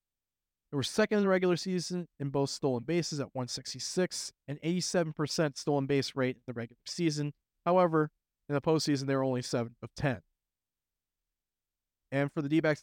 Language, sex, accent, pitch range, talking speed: English, male, American, 120-155 Hz, 175 wpm